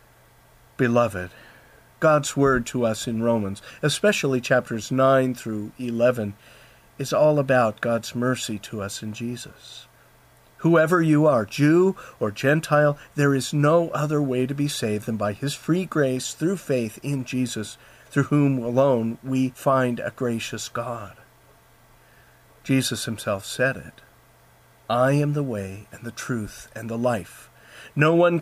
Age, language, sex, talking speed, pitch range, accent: 50-69, English, male, 145 wpm, 115-150 Hz, American